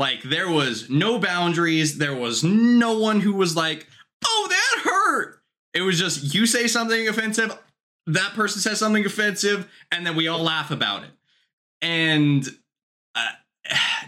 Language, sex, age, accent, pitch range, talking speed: English, male, 20-39, American, 140-190 Hz, 155 wpm